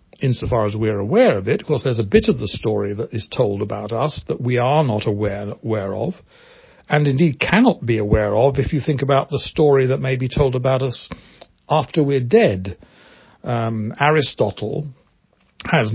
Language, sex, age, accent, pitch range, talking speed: English, male, 60-79, British, 110-150 Hz, 190 wpm